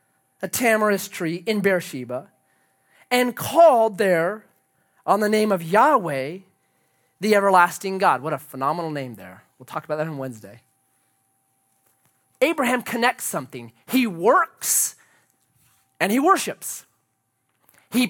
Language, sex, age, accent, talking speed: English, male, 30-49, American, 120 wpm